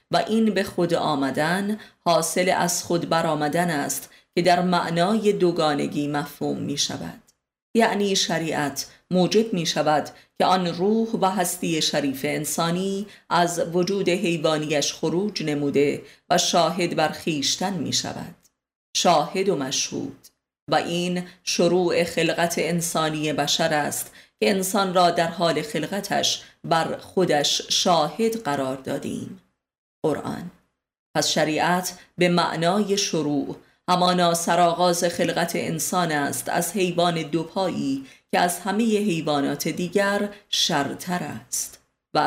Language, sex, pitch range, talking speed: Persian, female, 155-185 Hz, 120 wpm